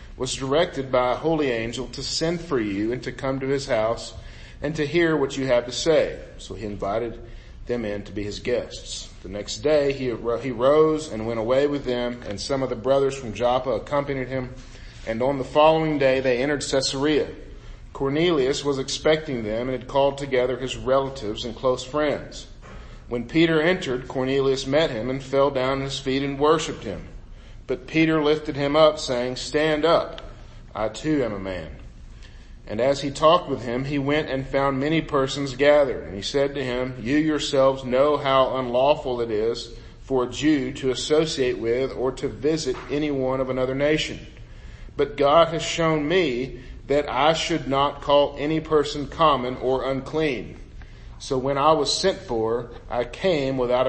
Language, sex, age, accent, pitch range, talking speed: English, male, 40-59, American, 120-145 Hz, 180 wpm